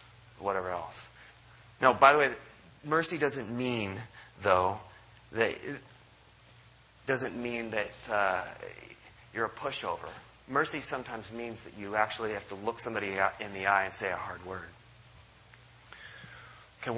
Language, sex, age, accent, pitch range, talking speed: English, male, 30-49, American, 100-120 Hz, 135 wpm